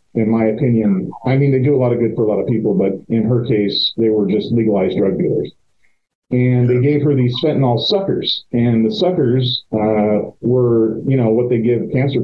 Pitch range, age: 110-130 Hz, 40-59